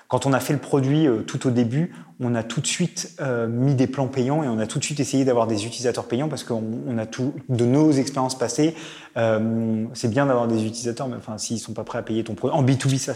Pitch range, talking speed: 110-130 Hz, 285 wpm